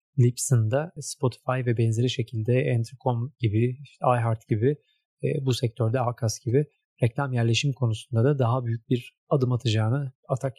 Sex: male